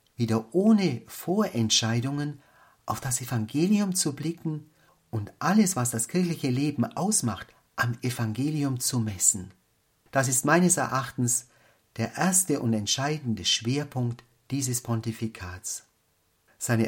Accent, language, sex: German, German, male